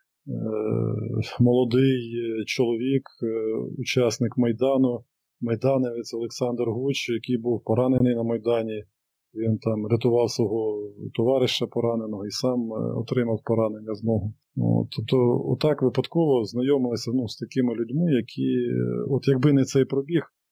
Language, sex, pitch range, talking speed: Ukrainian, male, 115-135 Hz, 115 wpm